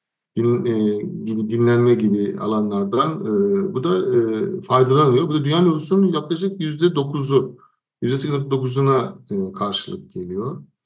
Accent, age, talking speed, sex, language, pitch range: native, 50-69, 110 wpm, male, Turkish, 110-170 Hz